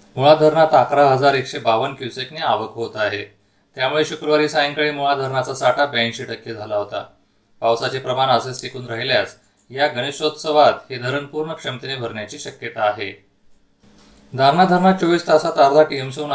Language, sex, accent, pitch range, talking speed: Marathi, male, native, 115-145 Hz, 145 wpm